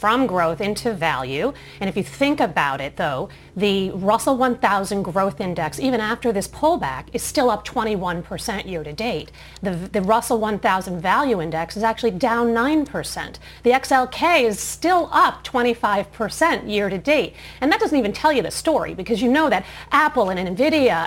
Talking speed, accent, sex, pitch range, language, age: 175 wpm, American, female, 230-295 Hz, English, 40-59